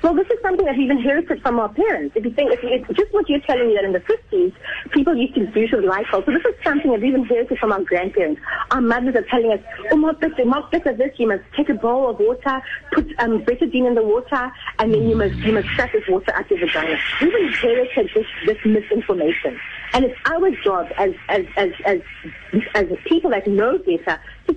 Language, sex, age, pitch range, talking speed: English, female, 40-59, 210-335 Hz, 230 wpm